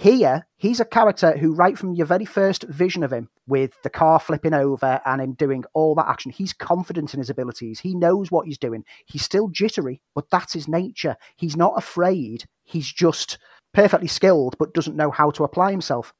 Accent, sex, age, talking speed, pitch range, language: British, male, 30-49, 205 wpm, 140-175 Hz, English